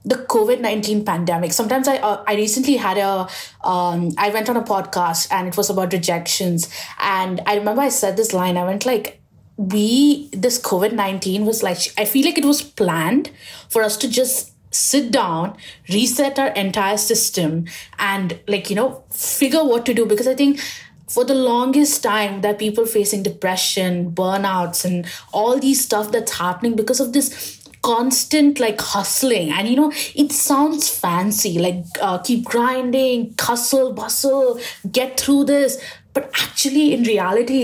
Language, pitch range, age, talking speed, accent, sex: English, 190-255 Hz, 20-39, 165 wpm, Indian, female